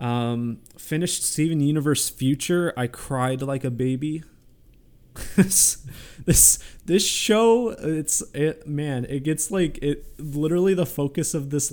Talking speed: 135 wpm